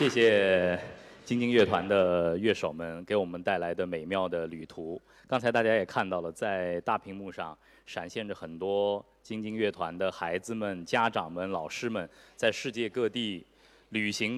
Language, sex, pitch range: Chinese, male, 95-130 Hz